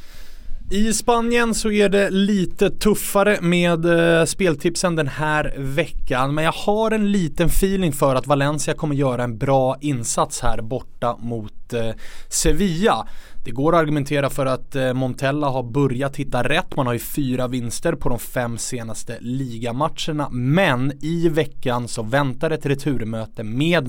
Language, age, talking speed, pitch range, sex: English, 20-39, 150 wpm, 120-160 Hz, male